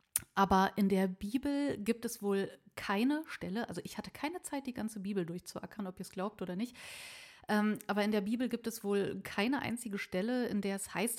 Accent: German